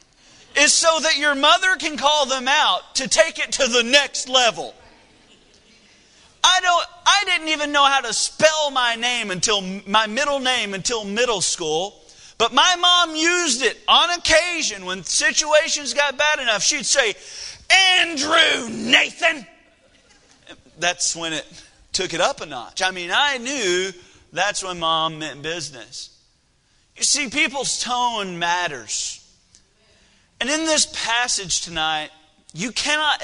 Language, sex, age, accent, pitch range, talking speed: English, male, 40-59, American, 195-295 Hz, 145 wpm